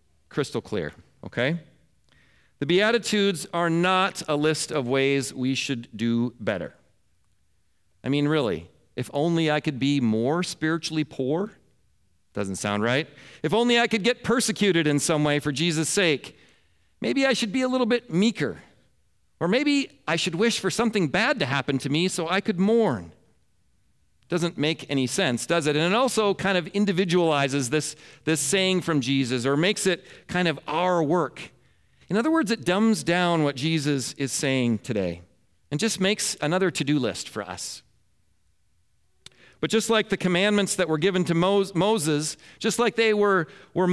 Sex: male